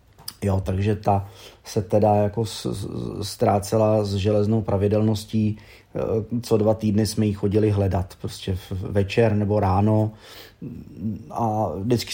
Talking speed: 115 wpm